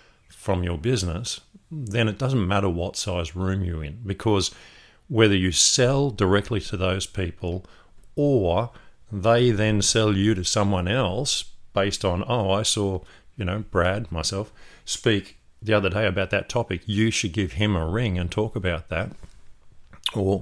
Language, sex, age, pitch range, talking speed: English, male, 50-69, 90-110 Hz, 160 wpm